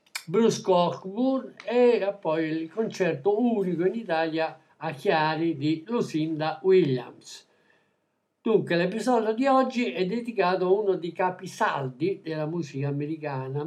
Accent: native